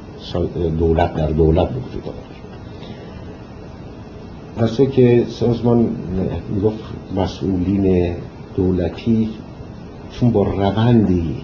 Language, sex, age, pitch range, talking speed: Persian, male, 60-79, 85-110 Hz, 80 wpm